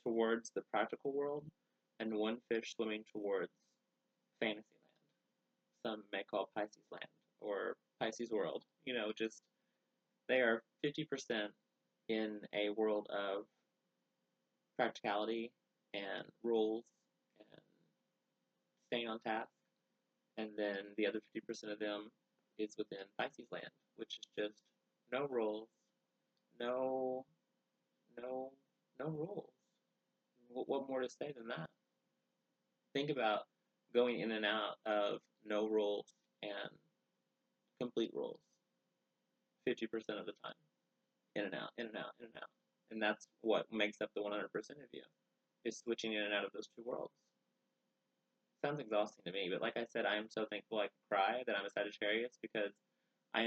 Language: English